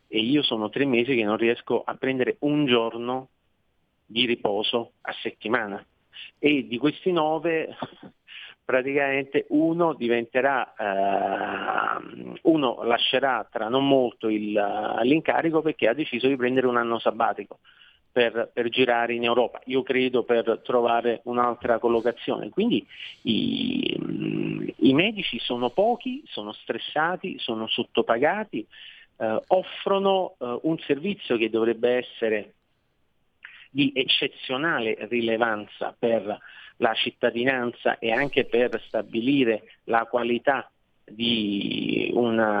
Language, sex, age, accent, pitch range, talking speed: Italian, male, 40-59, native, 115-140 Hz, 115 wpm